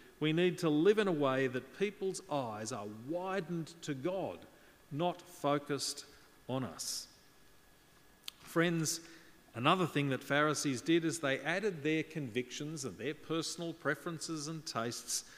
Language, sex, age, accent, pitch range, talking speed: English, male, 40-59, New Zealand, 125-155 Hz, 135 wpm